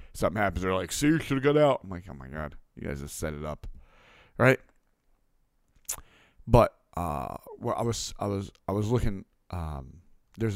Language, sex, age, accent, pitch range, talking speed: English, male, 40-59, American, 95-120 Hz, 195 wpm